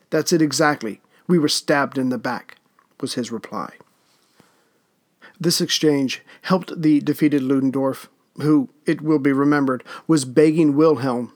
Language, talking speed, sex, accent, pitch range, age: English, 135 wpm, male, American, 135-160 Hz, 50-69